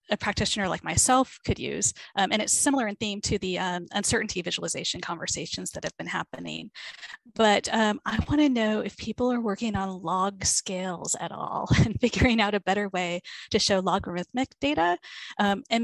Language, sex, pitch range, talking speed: English, female, 190-230 Hz, 185 wpm